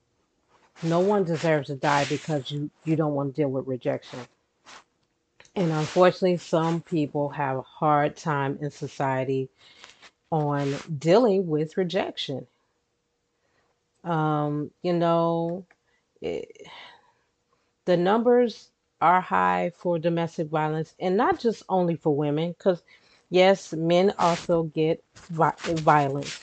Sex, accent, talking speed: female, American, 115 wpm